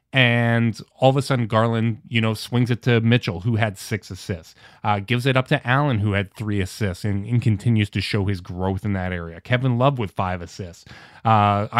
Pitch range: 105-130 Hz